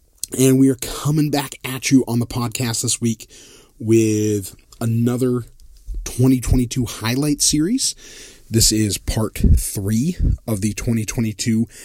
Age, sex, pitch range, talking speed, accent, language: 30-49, male, 110-125 Hz, 120 wpm, American, English